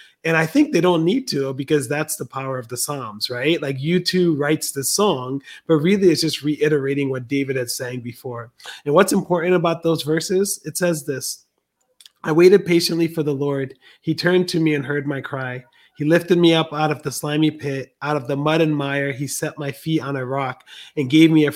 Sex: male